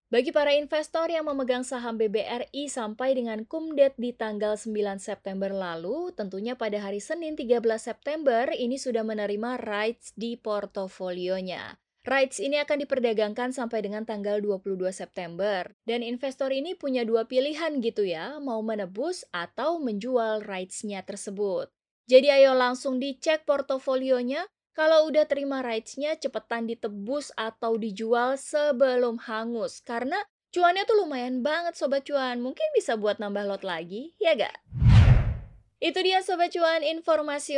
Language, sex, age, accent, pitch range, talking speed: Indonesian, female, 20-39, native, 215-290 Hz, 135 wpm